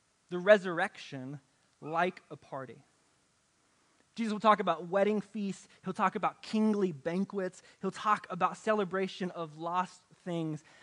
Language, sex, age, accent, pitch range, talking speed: English, male, 20-39, American, 170-215 Hz, 125 wpm